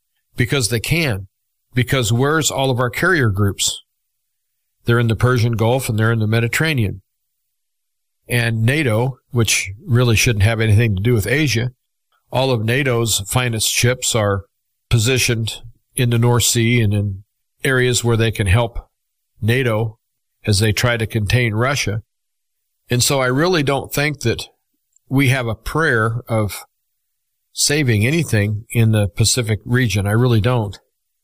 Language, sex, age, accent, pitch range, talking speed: English, male, 50-69, American, 110-130 Hz, 150 wpm